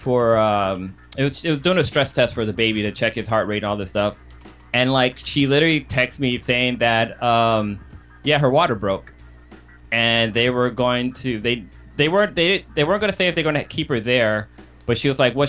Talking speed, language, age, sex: 235 wpm, English, 20-39, male